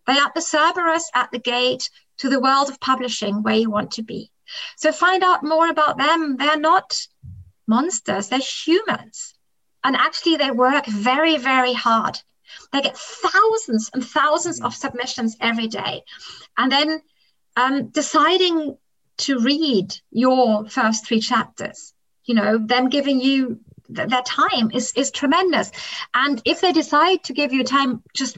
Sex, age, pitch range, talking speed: female, 30-49, 225-305 Hz, 150 wpm